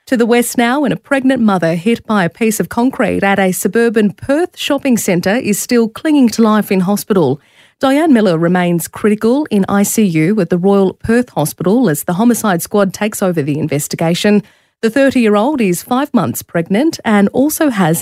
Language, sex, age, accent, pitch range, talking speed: English, female, 30-49, Australian, 185-240 Hz, 185 wpm